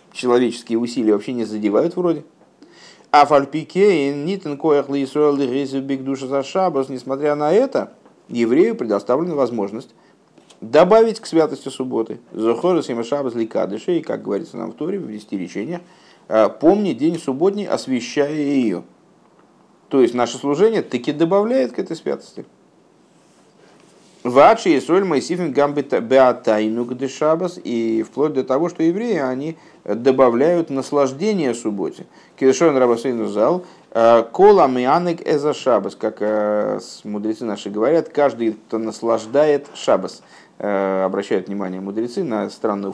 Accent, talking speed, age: native, 100 wpm, 50-69